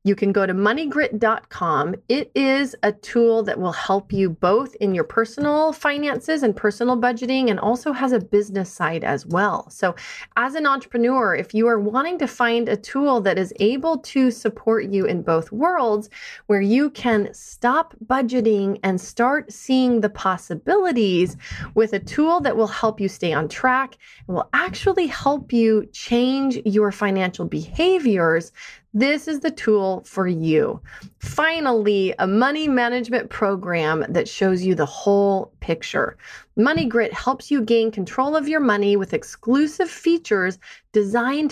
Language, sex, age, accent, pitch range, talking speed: English, female, 30-49, American, 195-260 Hz, 155 wpm